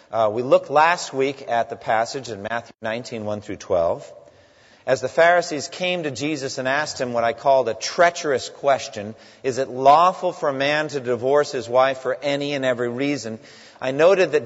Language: English